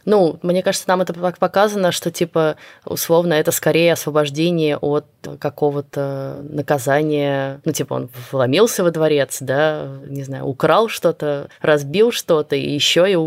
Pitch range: 145-185 Hz